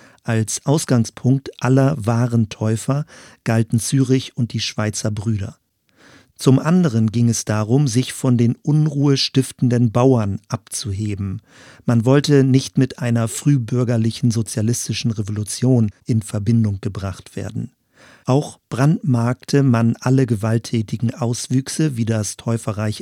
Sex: male